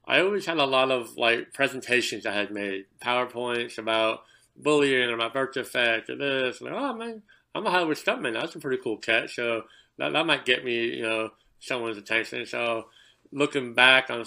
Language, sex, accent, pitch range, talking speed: English, male, American, 110-120 Hz, 200 wpm